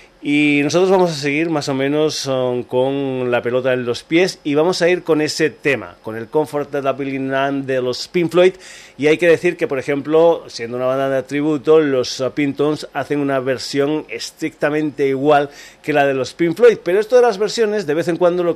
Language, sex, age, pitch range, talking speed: Spanish, male, 30-49, 130-165 Hz, 210 wpm